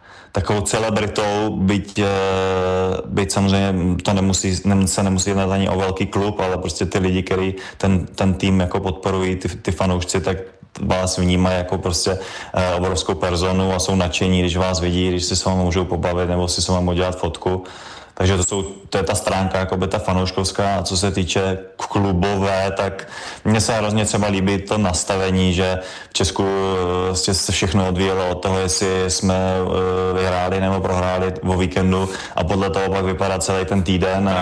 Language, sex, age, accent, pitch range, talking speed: Czech, male, 20-39, native, 90-95 Hz, 175 wpm